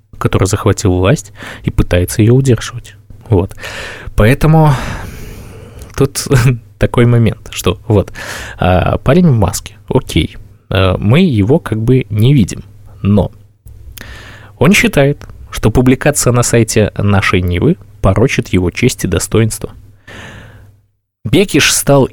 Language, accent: Russian, native